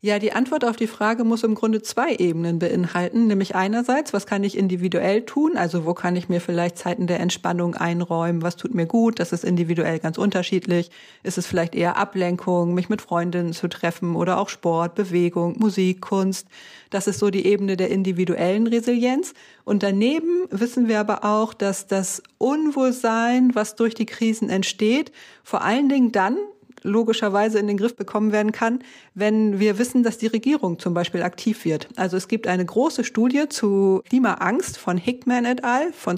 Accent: German